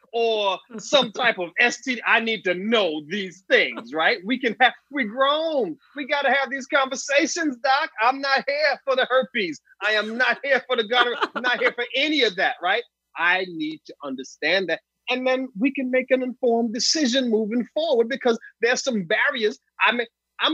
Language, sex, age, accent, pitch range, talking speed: English, male, 30-49, American, 175-270 Hz, 190 wpm